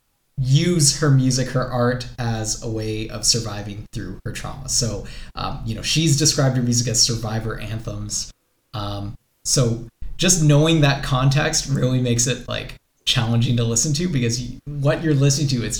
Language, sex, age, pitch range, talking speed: English, male, 20-39, 120-150 Hz, 170 wpm